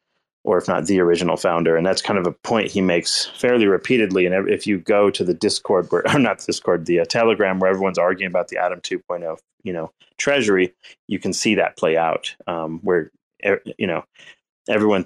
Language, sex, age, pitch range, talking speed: English, male, 30-49, 90-110 Hz, 205 wpm